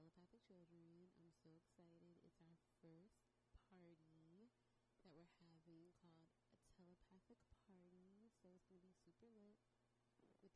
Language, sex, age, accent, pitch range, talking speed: Polish, female, 30-49, American, 160-195 Hz, 135 wpm